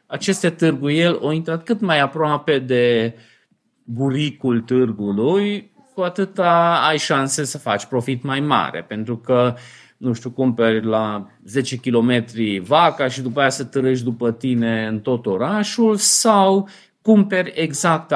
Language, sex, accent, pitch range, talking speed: Romanian, male, native, 120-160 Hz, 135 wpm